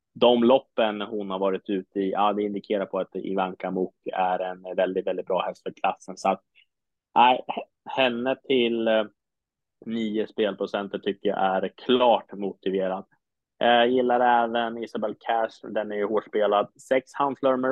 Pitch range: 100-120 Hz